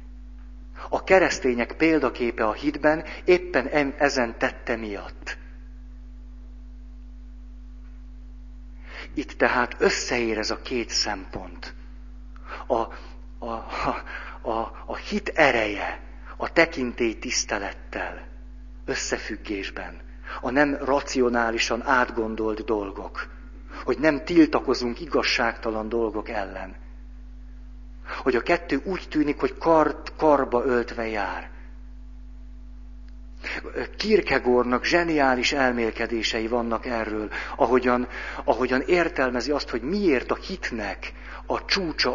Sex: male